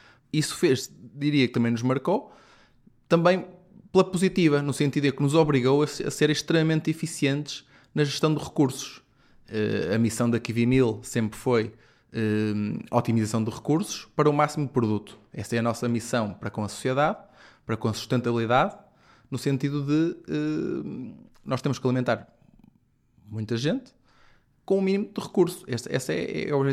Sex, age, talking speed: male, 20-39, 160 wpm